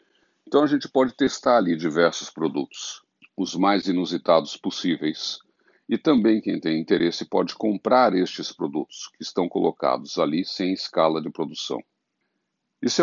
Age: 60-79